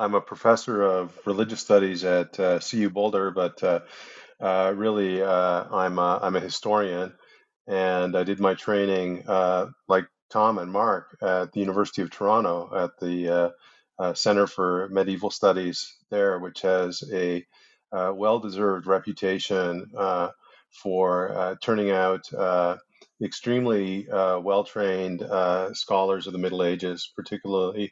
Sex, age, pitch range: male, 40-59, 90-105 Hz